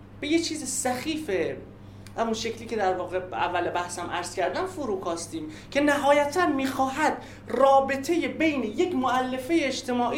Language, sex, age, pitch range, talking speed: Persian, male, 30-49, 180-275 Hz, 130 wpm